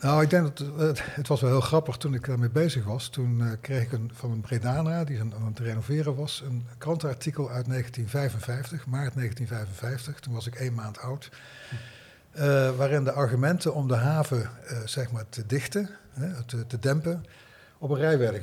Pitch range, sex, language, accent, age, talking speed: 115-140 Hz, male, Dutch, Dutch, 50-69, 195 wpm